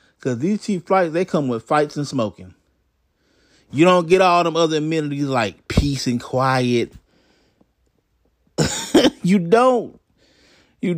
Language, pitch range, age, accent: English, 155-240 Hz, 30-49, American